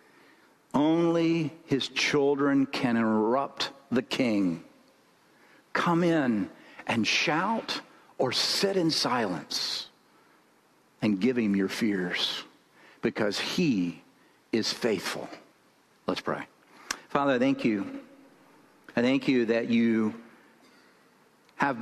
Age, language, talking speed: 50-69, English, 95 wpm